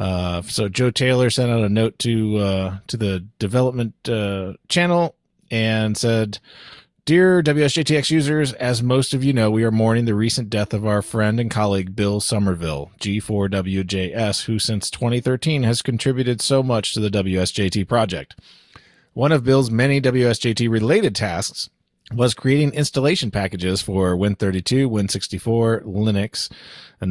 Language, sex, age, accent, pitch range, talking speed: English, male, 30-49, American, 100-130 Hz, 145 wpm